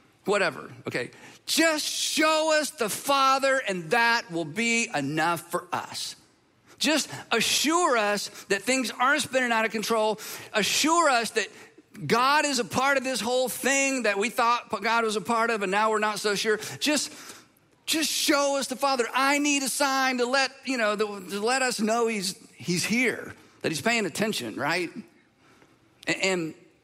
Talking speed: 170 wpm